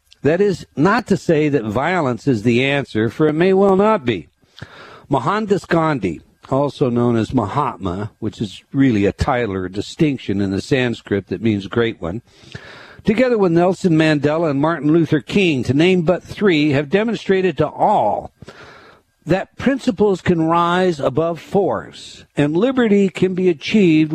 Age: 60-79